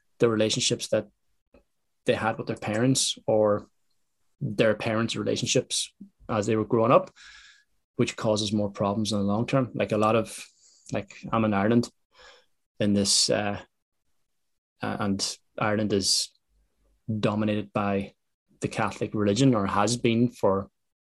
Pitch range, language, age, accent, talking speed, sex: 105-125 Hz, English, 20-39, Irish, 135 wpm, male